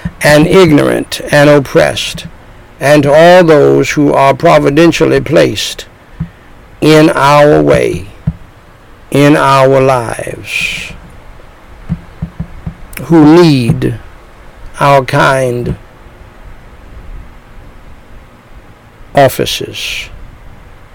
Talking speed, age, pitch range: 65 wpm, 60-79, 130-170 Hz